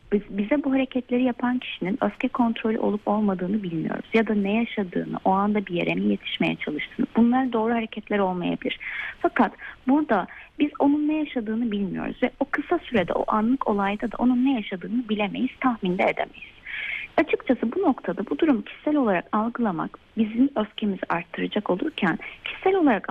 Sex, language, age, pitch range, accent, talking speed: female, Turkish, 30-49, 205-275 Hz, native, 160 wpm